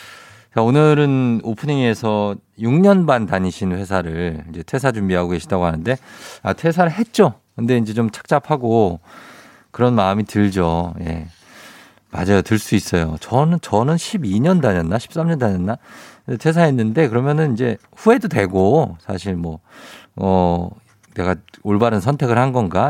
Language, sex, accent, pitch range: Korean, male, native, 95-150 Hz